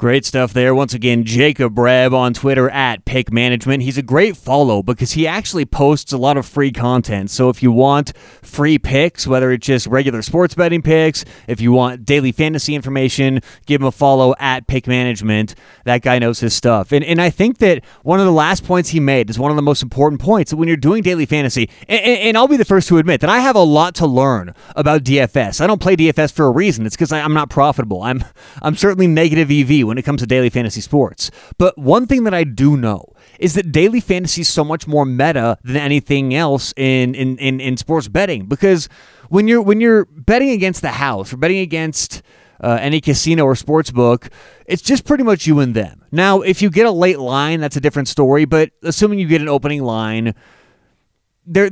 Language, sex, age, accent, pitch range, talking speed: English, male, 30-49, American, 125-165 Hz, 220 wpm